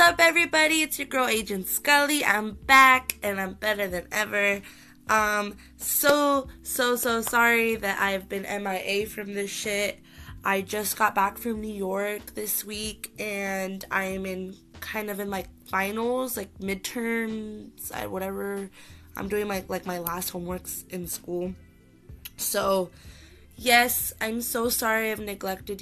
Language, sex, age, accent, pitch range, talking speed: English, female, 20-39, American, 190-230 Hz, 150 wpm